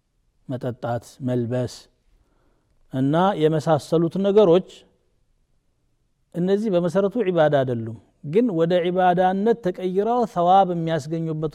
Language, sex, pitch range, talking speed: Amharic, male, 135-175 Hz, 80 wpm